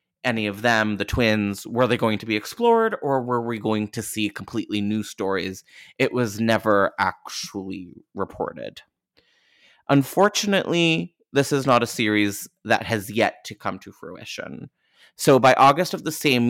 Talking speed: 160 wpm